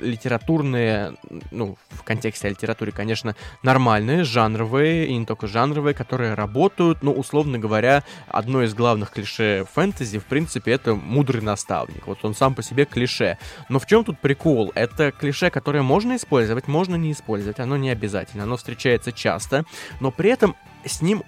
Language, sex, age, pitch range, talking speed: Russian, male, 20-39, 110-150 Hz, 165 wpm